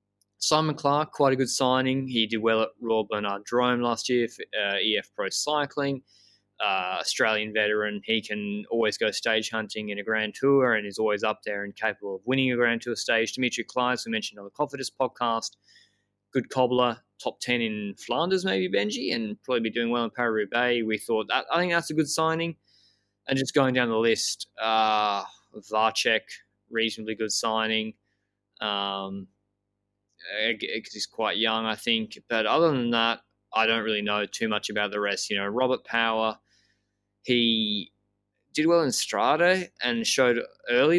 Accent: Australian